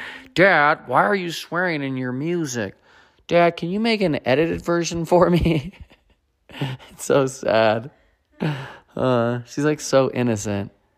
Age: 20-39